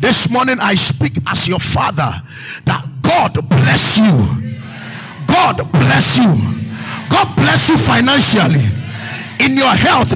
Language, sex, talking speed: English, male, 125 wpm